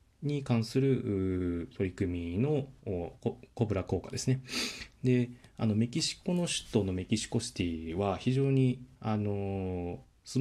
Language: Japanese